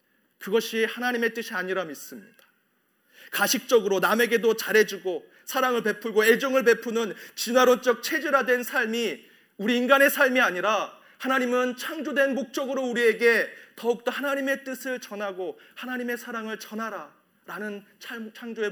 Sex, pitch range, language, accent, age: male, 200-250 Hz, Korean, native, 40-59